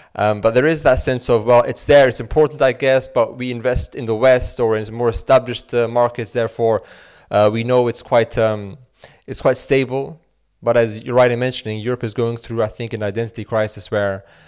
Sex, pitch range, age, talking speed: male, 110-125 Hz, 20-39, 215 wpm